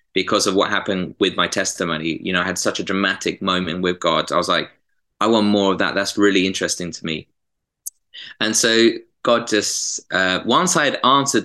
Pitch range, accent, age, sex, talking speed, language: 90-105 Hz, British, 20-39, male, 205 wpm, English